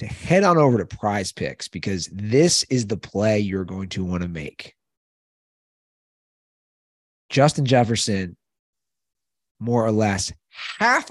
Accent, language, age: American, English, 30-49